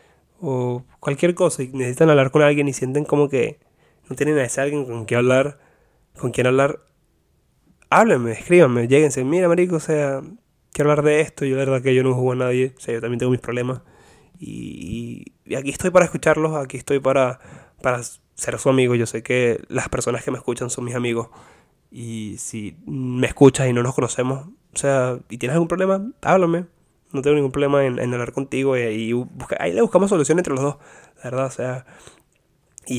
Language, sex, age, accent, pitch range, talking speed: Spanish, male, 20-39, Argentinian, 125-145 Hz, 205 wpm